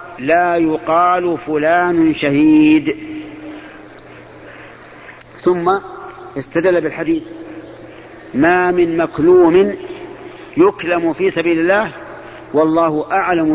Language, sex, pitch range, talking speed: Arabic, male, 155-200 Hz, 70 wpm